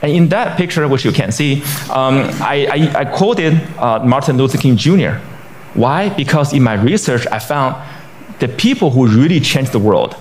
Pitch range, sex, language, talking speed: 110-150 Hz, male, English, 190 wpm